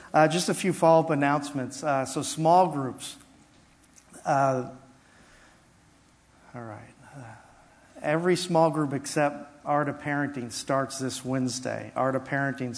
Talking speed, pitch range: 125 wpm, 125-155 Hz